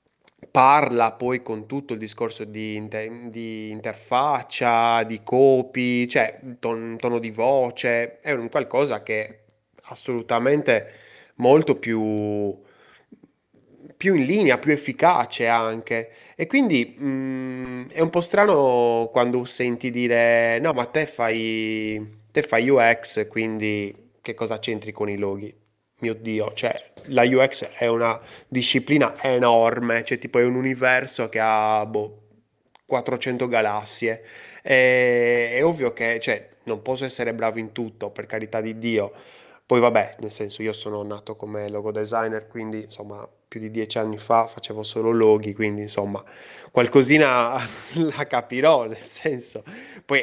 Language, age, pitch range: Italian, 20-39, 110-125 Hz